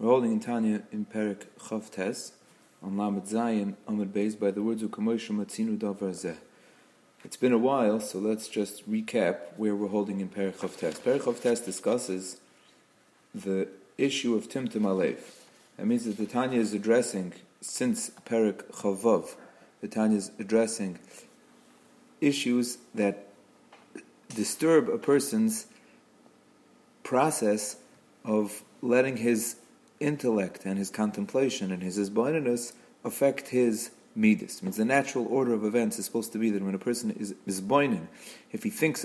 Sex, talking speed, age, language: male, 130 wpm, 40-59, English